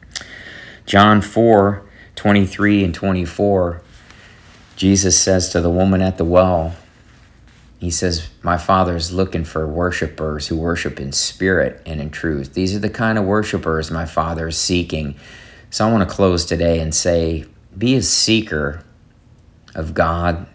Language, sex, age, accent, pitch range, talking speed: English, male, 50-69, American, 80-100 Hz, 150 wpm